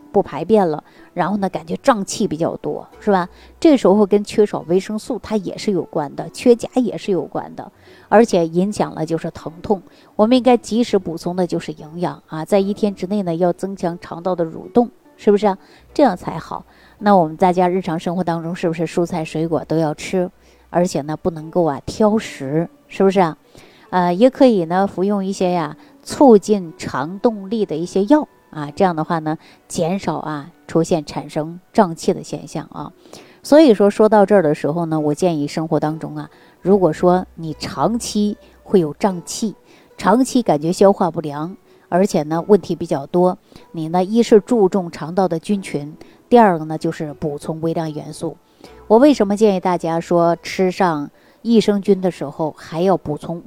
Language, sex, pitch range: Chinese, female, 160-205 Hz